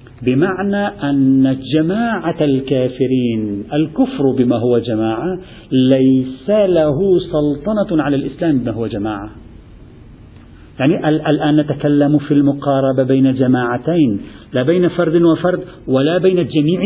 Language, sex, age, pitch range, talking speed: Arabic, male, 50-69, 135-180 Hz, 105 wpm